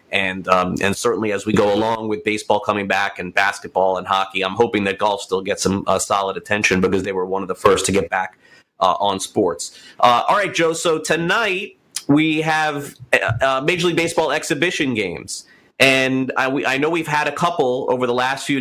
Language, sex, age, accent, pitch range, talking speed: English, male, 30-49, American, 115-150 Hz, 215 wpm